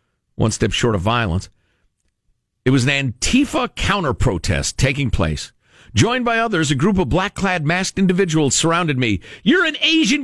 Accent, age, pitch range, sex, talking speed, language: American, 50-69, 115-185 Hz, male, 150 wpm, English